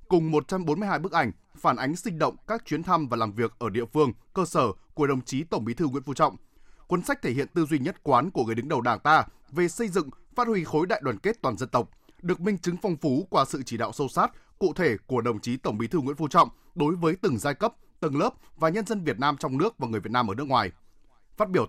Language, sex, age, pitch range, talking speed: Vietnamese, male, 20-39, 130-180 Hz, 275 wpm